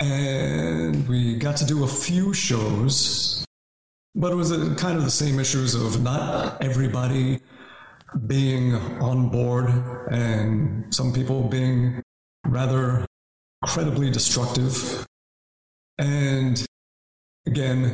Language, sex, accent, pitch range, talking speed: English, male, American, 120-150 Hz, 105 wpm